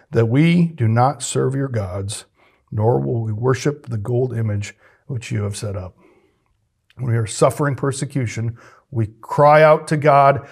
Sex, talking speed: male, 165 wpm